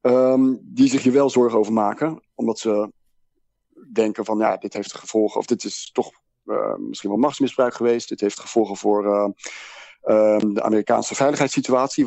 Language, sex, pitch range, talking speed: Dutch, male, 105-125 Hz, 170 wpm